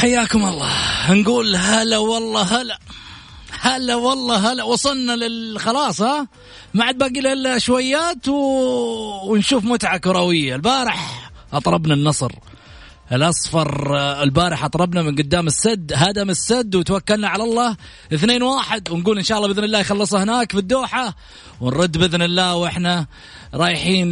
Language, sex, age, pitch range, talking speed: Arabic, male, 30-49, 130-205 Hz, 130 wpm